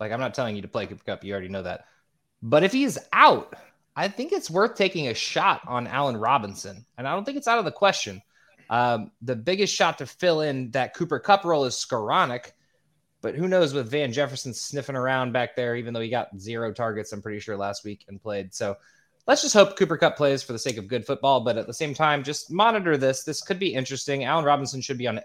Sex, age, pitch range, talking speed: male, 20-39, 110-155 Hz, 240 wpm